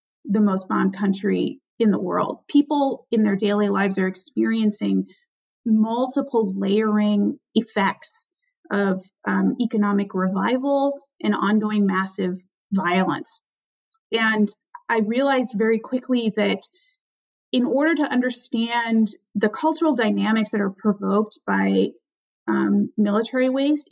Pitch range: 210-280 Hz